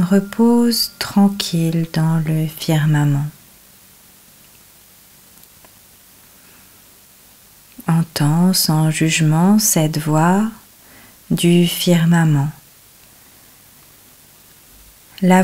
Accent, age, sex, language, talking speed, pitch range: French, 30-49, female, French, 50 wpm, 110-170 Hz